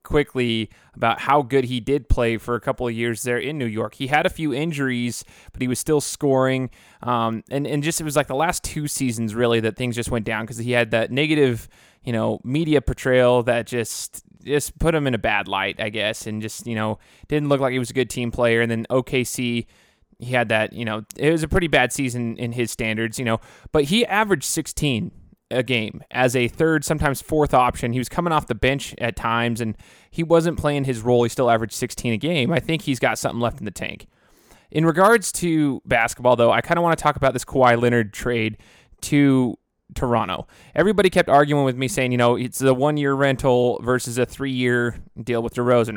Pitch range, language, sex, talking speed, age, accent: 120-145 Hz, English, male, 225 wpm, 20-39, American